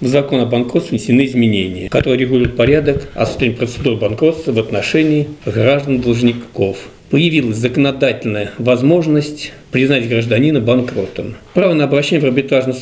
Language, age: Russian, 50-69